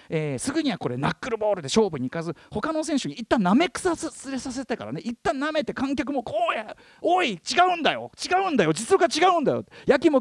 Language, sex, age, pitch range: Japanese, male, 40-59, 185-275 Hz